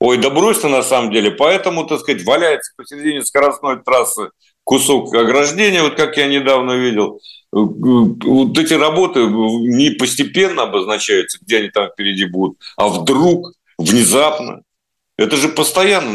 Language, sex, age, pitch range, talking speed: Russian, male, 50-69, 115-155 Hz, 140 wpm